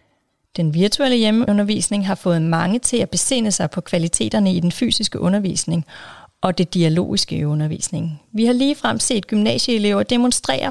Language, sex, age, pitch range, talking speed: Danish, female, 30-49, 180-235 Hz, 145 wpm